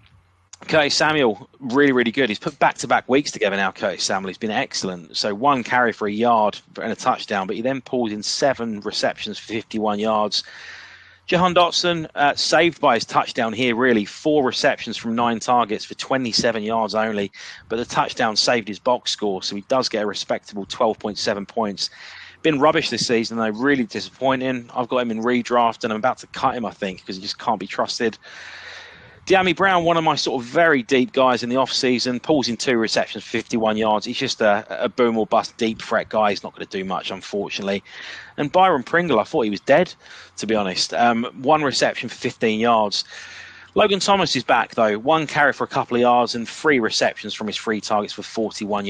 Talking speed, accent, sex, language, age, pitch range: 205 wpm, British, male, English, 30-49, 110-140 Hz